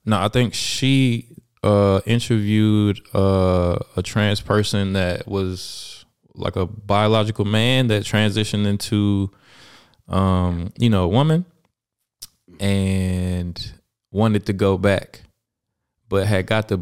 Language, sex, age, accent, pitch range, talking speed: English, male, 20-39, American, 100-145 Hz, 120 wpm